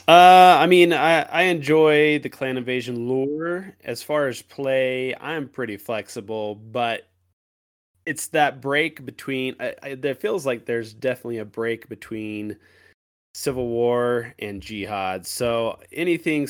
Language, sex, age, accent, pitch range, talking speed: English, male, 20-39, American, 95-125 Hz, 140 wpm